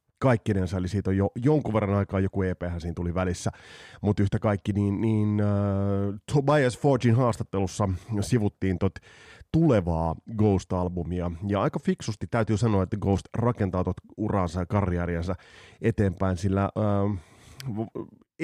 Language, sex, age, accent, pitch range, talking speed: Finnish, male, 30-49, native, 90-115 Hz, 130 wpm